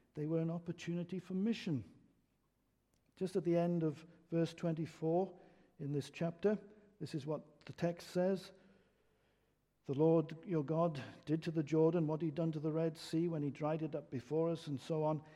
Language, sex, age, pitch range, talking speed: English, male, 60-79, 150-200 Hz, 185 wpm